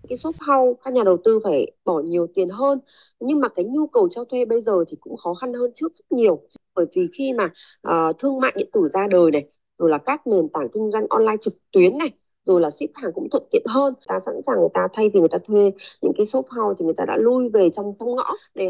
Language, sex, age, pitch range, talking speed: Vietnamese, female, 20-39, 180-270 Hz, 270 wpm